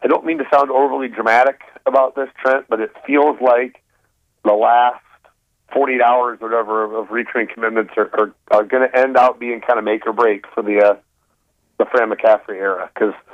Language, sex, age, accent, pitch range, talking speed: English, male, 40-59, American, 110-125 Hz, 200 wpm